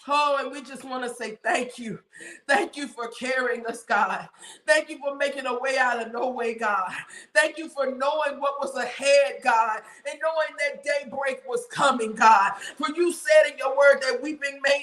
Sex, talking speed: female, 200 wpm